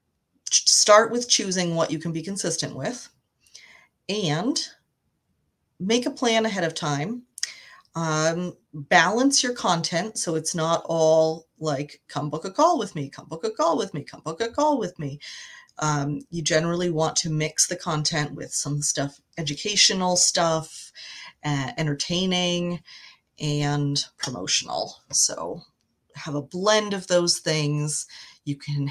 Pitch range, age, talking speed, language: 145-170 Hz, 30-49, 145 wpm, English